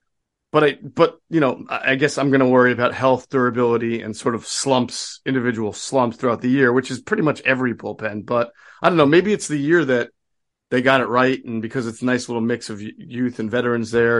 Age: 40-59